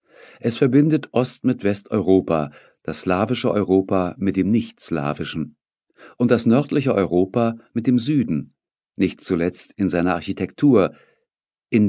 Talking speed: 125 wpm